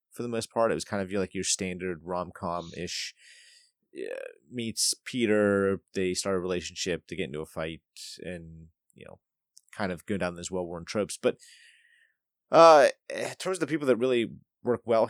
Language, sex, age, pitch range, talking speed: English, male, 30-49, 90-110 Hz, 185 wpm